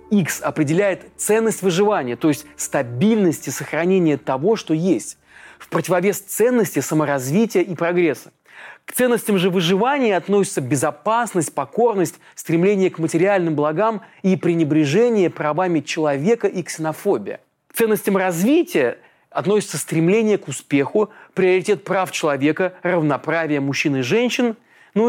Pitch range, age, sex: 150-200 Hz, 30-49, male